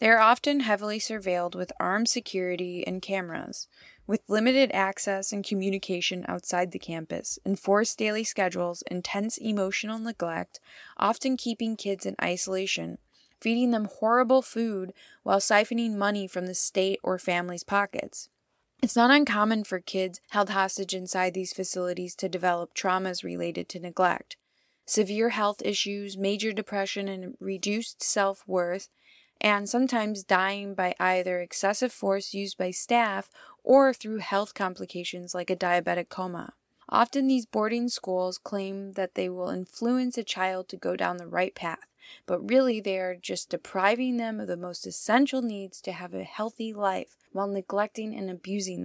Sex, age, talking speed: female, 20-39, 150 wpm